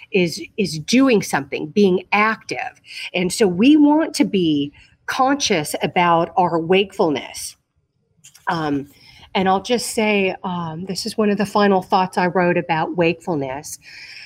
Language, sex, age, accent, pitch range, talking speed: English, female, 40-59, American, 165-210 Hz, 140 wpm